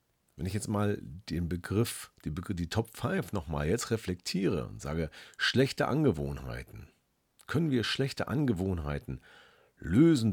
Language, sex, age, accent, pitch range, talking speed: German, male, 40-59, German, 90-125 Hz, 120 wpm